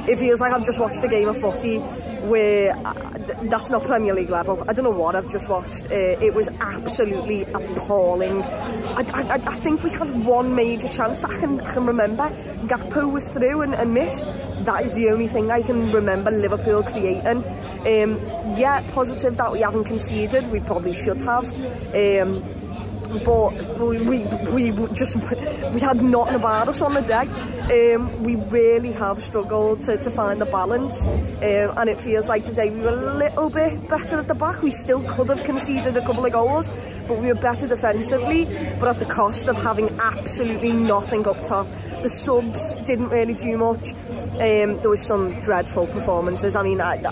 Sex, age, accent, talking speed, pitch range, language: female, 20-39, British, 185 wpm, 210-250 Hz, English